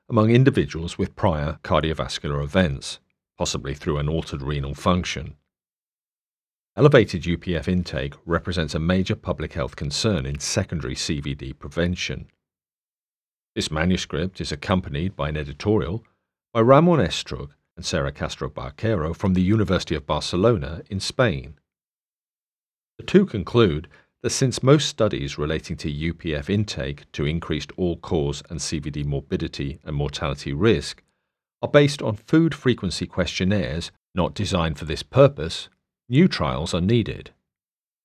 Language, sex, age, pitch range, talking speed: English, male, 40-59, 75-100 Hz, 130 wpm